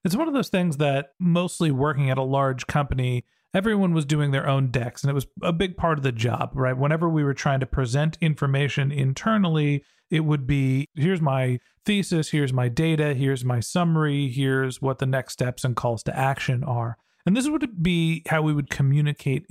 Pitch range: 135-165 Hz